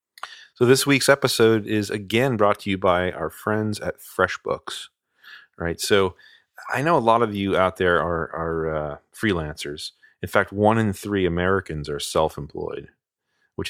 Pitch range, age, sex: 85-105 Hz, 30-49, male